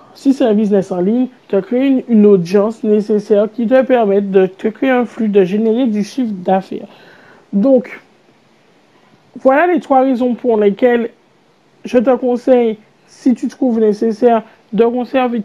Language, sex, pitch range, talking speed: French, male, 210-270 Hz, 160 wpm